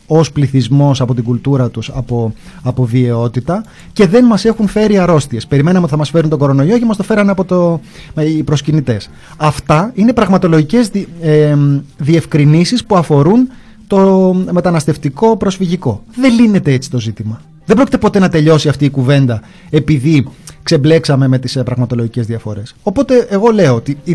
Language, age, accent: Greek, 30-49, native